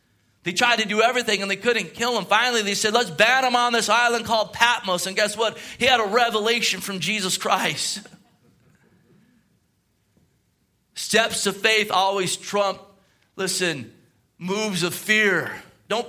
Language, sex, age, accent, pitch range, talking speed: English, male, 30-49, American, 170-210 Hz, 155 wpm